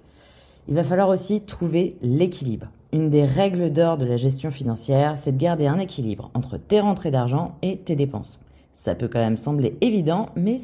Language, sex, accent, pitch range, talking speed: French, female, French, 125-170 Hz, 185 wpm